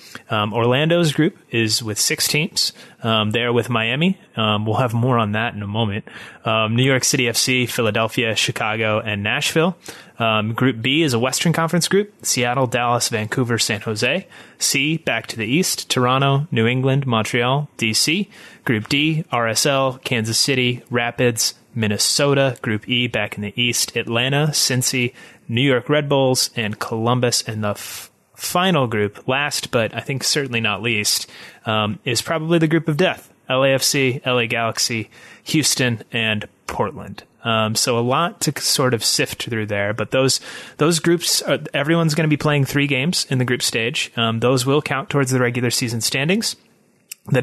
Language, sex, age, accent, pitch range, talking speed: English, male, 30-49, American, 115-145 Hz, 165 wpm